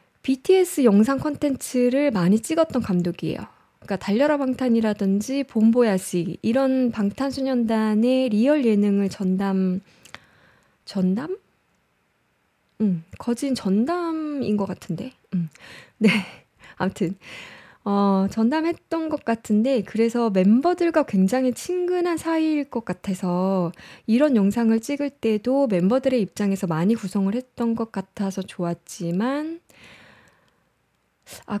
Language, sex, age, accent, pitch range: Korean, female, 20-39, native, 195-280 Hz